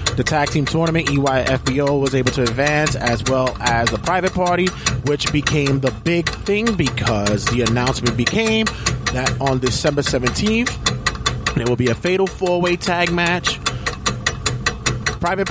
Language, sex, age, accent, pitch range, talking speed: English, male, 30-49, American, 125-155 Hz, 145 wpm